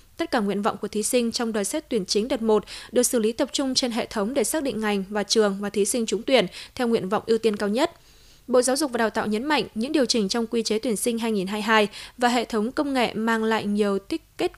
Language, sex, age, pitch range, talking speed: Vietnamese, female, 10-29, 210-255 Hz, 275 wpm